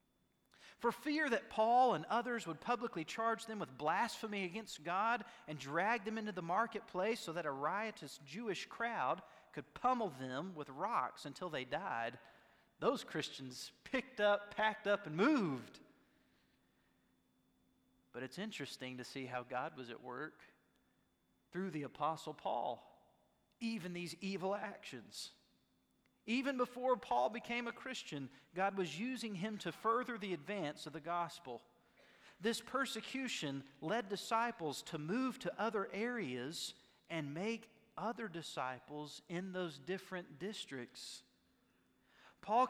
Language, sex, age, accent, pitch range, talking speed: English, male, 40-59, American, 150-230 Hz, 135 wpm